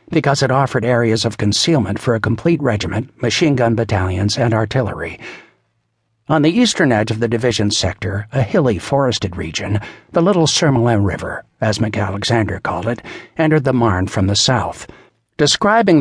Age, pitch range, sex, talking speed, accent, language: 60-79, 105-130 Hz, male, 155 wpm, American, English